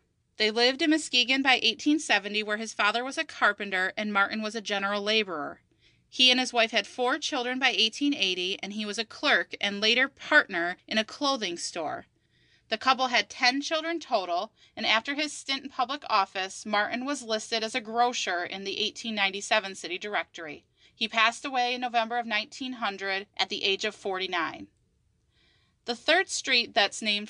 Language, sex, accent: English, female, American